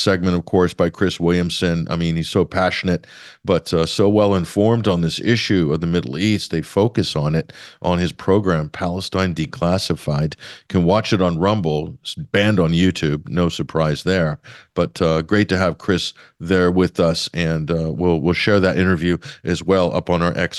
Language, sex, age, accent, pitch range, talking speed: English, male, 50-69, American, 85-95 Hz, 190 wpm